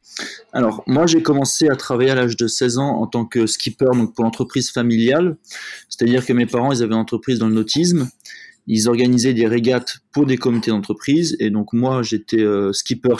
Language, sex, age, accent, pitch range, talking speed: French, male, 20-39, French, 110-130 Hz, 205 wpm